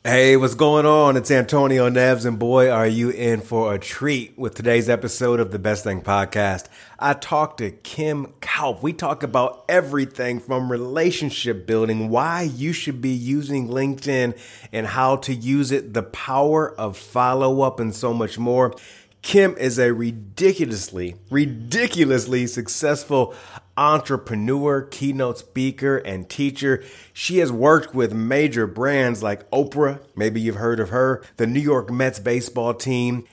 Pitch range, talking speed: 110-140 Hz, 155 wpm